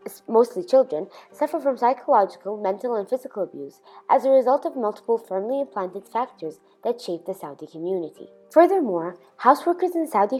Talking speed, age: 150 wpm, 20-39